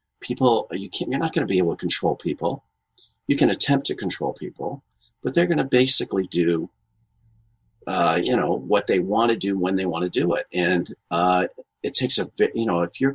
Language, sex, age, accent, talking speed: English, male, 40-59, American, 220 wpm